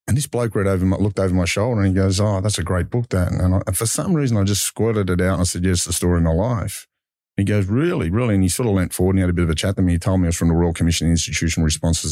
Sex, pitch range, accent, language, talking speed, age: male, 85-100 Hz, Australian, English, 345 wpm, 40-59